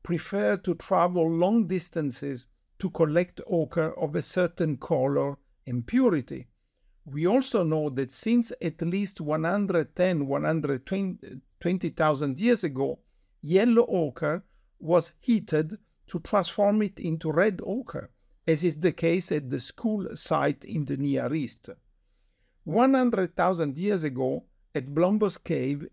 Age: 50-69